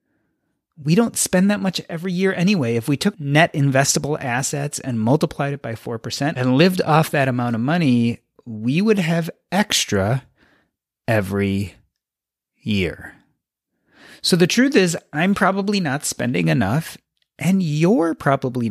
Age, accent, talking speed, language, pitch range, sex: 30-49, American, 140 wpm, English, 130-185 Hz, male